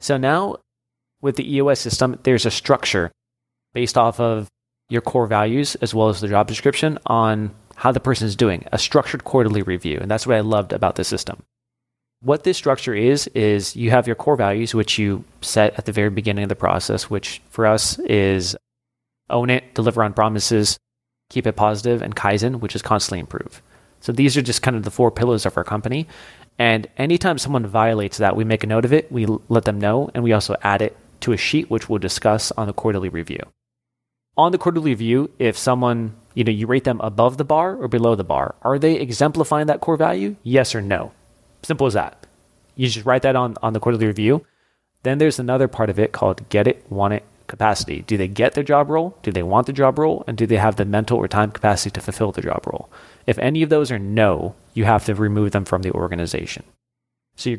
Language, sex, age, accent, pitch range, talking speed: English, male, 30-49, American, 105-125 Hz, 220 wpm